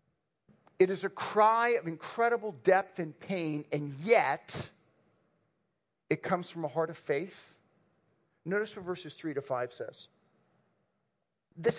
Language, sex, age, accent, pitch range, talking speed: English, male, 40-59, American, 195-275 Hz, 130 wpm